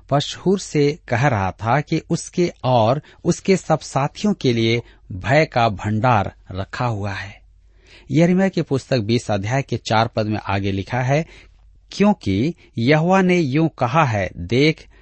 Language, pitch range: Hindi, 105-155 Hz